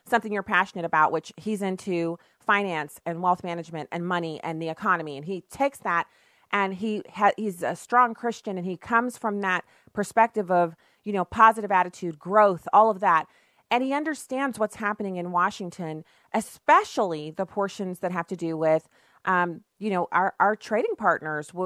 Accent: American